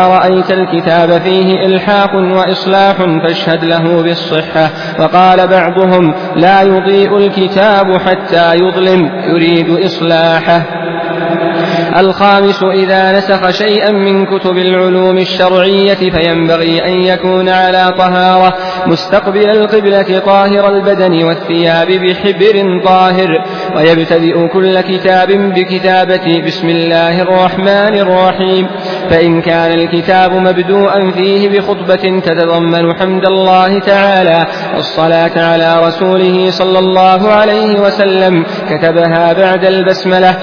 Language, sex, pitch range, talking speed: Arabic, male, 170-195 Hz, 95 wpm